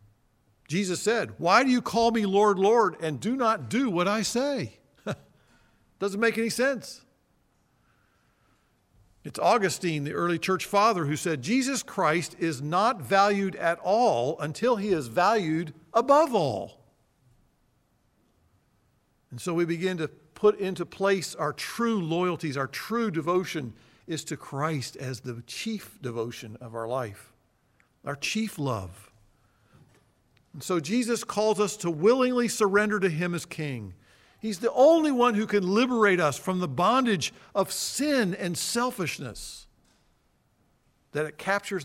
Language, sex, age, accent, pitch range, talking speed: English, male, 50-69, American, 145-220 Hz, 140 wpm